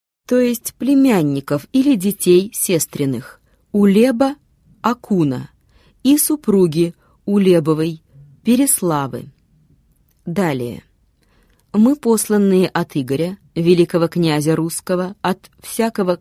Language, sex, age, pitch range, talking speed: Russian, female, 20-39, 155-205 Hz, 80 wpm